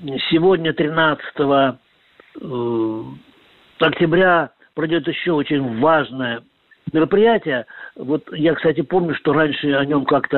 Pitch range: 130-160 Hz